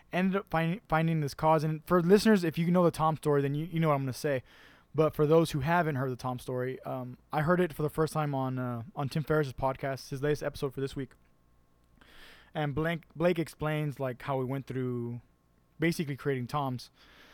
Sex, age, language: male, 20-39, English